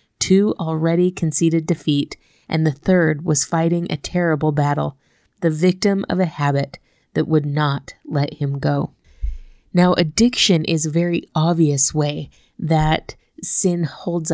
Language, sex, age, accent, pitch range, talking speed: English, female, 20-39, American, 155-185 Hz, 140 wpm